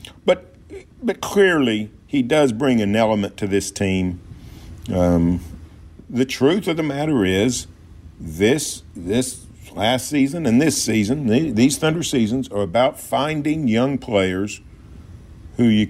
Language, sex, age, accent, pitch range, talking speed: English, male, 50-69, American, 95-120 Hz, 135 wpm